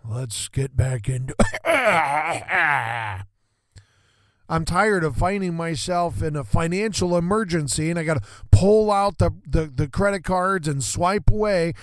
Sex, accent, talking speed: male, American, 140 wpm